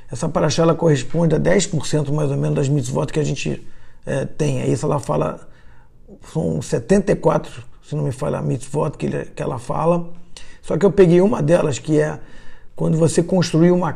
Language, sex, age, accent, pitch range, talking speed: Portuguese, male, 50-69, Brazilian, 145-180 Hz, 180 wpm